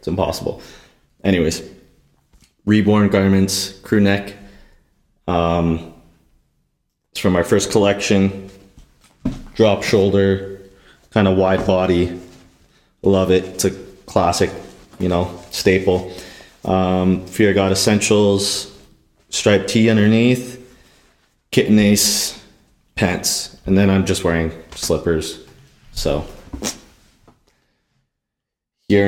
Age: 30-49